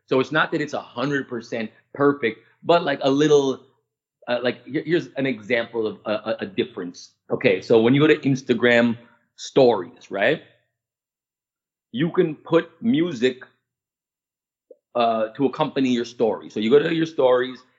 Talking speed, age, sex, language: 150 wpm, 30-49, male, English